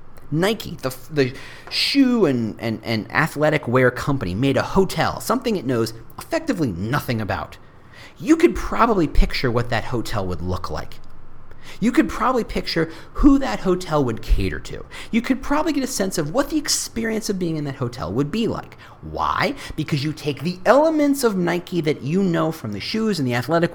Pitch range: 120-185 Hz